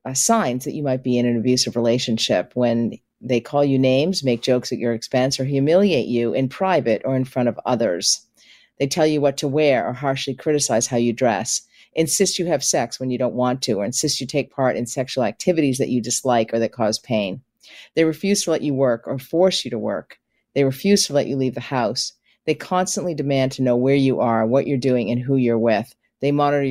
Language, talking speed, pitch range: English, 230 wpm, 120-150 Hz